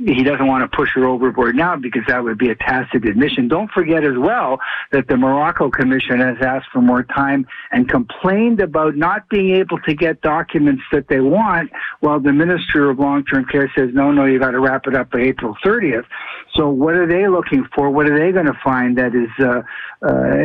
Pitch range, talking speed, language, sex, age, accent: 130-155 Hz, 215 wpm, English, male, 60-79, American